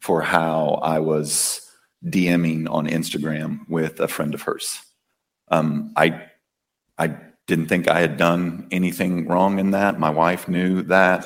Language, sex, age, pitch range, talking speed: English, male, 40-59, 80-95 Hz, 150 wpm